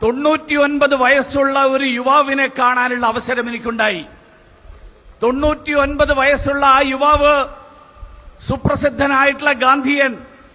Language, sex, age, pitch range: Hindi, male, 50-69, 265-290 Hz